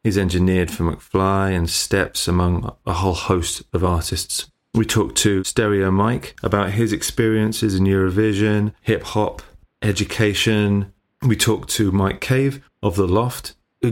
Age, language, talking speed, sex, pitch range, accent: 30-49, English, 140 wpm, male, 90-115 Hz, British